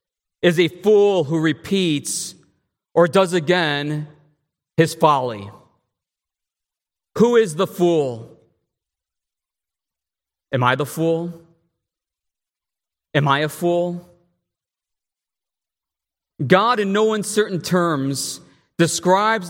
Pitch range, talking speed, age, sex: 120-160 Hz, 85 wpm, 40-59, male